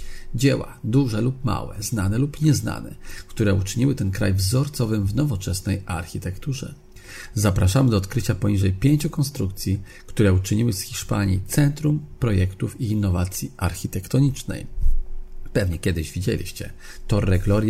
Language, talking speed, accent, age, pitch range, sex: Spanish, 120 wpm, Polish, 40-59, 90-110 Hz, male